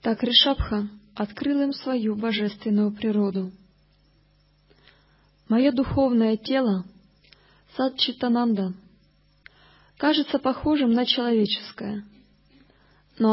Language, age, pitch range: Russian, 20-39, 195-240 Hz